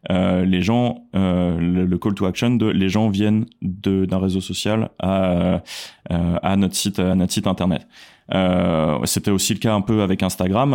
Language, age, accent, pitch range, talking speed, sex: French, 20-39, French, 90-100 Hz, 190 wpm, male